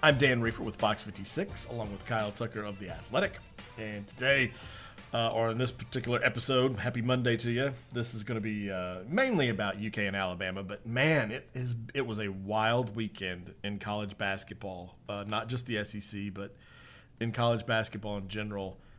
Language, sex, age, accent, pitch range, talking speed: English, male, 40-59, American, 105-130 Hz, 185 wpm